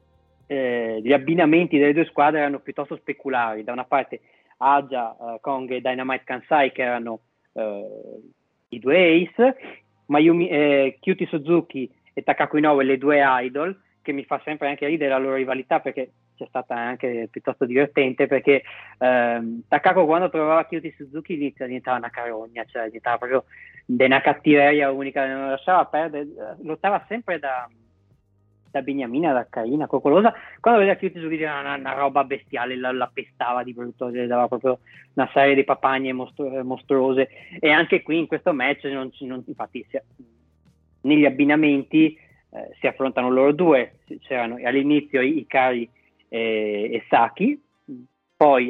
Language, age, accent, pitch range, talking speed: Italian, 20-39, native, 125-150 Hz, 150 wpm